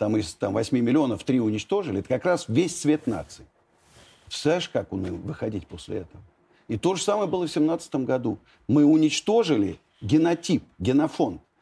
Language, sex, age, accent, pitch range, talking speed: Russian, male, 50-69, native, 135-180 Hz, 160 wpm